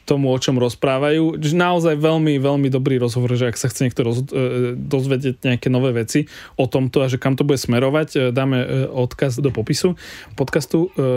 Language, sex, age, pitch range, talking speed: Slovak, male, 20-39, 130-155 Hz, 175 wpm